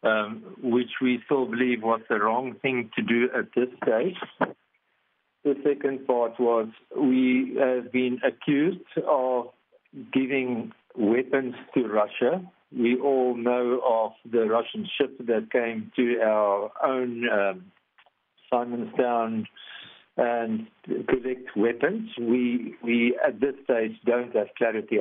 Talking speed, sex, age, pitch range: 125 wpm, male, 50-69, 110-130 Hz